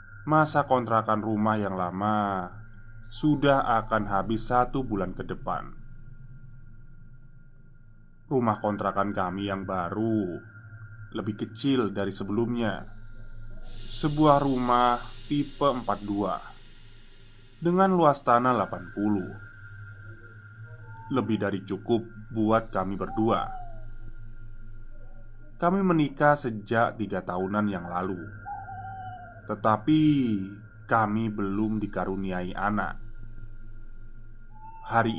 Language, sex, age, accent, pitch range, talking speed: Indonesian, male, 20-39, native, 105-125 Hz, 80 wpm